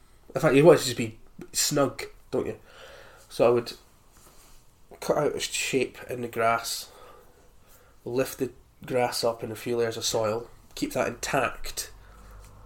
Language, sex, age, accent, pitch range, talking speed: English, male, 20-39, British, 105-130 Hz, 155 wpm